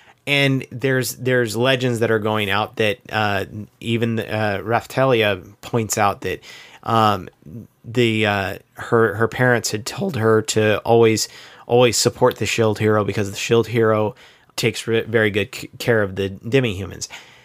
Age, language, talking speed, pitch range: 30-49, English, 155 wpm, 105-125 Hz